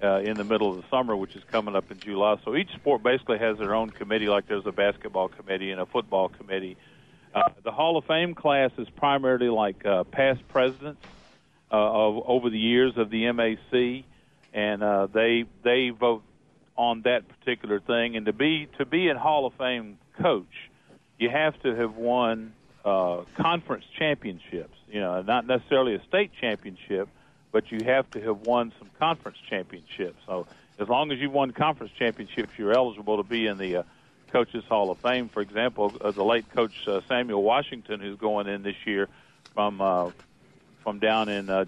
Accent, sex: American, male